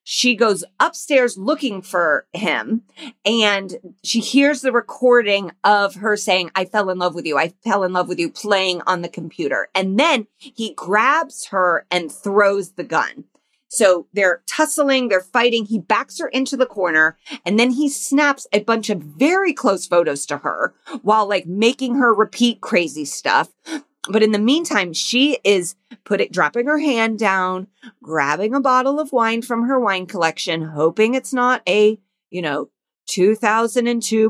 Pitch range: 185-260 Hz